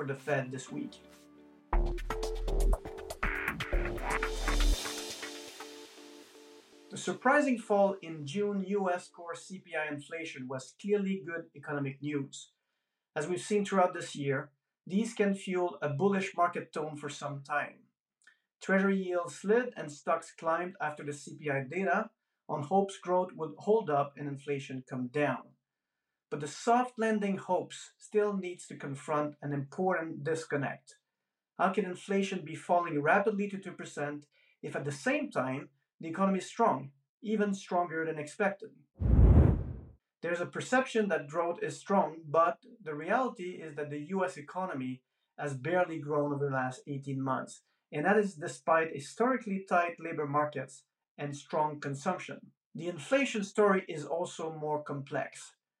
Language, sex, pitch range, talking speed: English, male, 145-195 Hz, 140 wpm